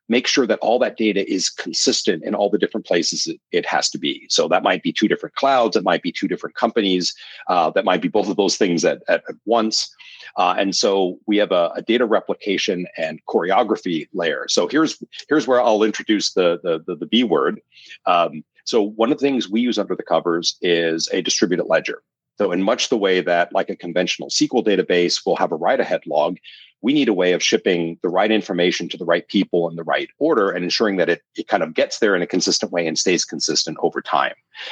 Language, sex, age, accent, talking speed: English, male, 40-59, American, 225 wpm